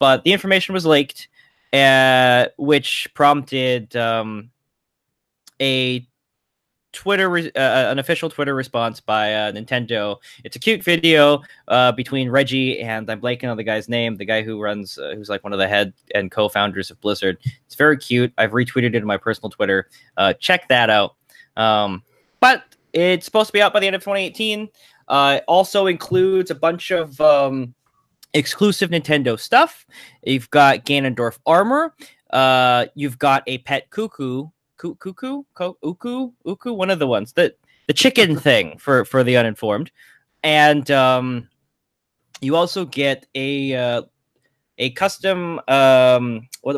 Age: 20-39